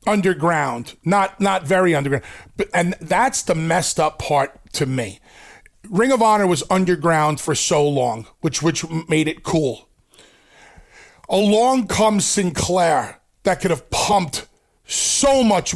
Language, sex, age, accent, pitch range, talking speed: English, male, 40-59, American, 145-215 Hz, 135 wpm